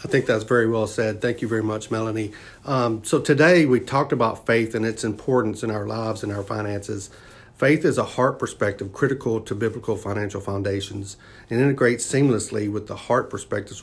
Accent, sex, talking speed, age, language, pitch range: American, male, 190 wpm, 40-59, English, 105-120 Hz